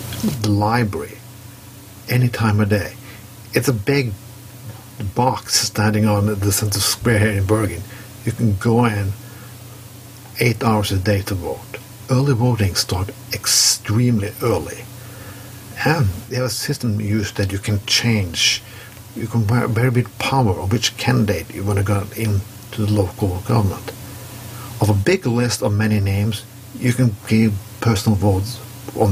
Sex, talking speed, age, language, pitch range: male, 150 wpm, 60-79, English, 105-120 Hz